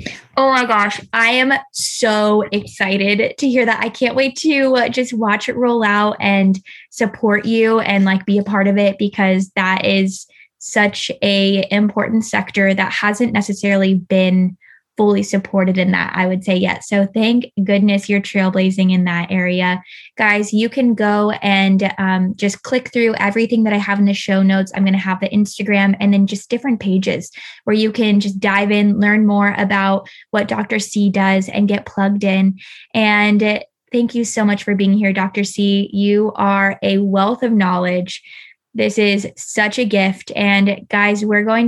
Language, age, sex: English, 10-29, female